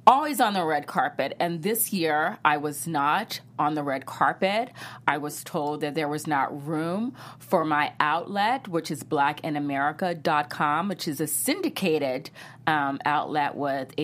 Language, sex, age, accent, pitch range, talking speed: English, female, 30-49, American, 150-205 Hz, 155 wpm